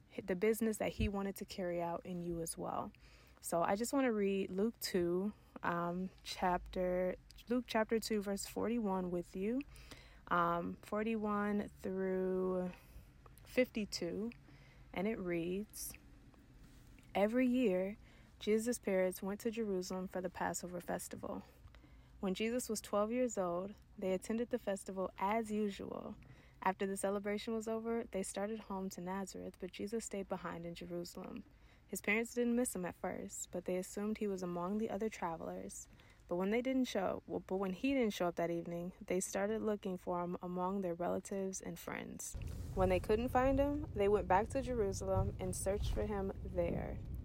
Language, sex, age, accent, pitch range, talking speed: English, female, 20-39, American, 175-215 Hz, 165 wpm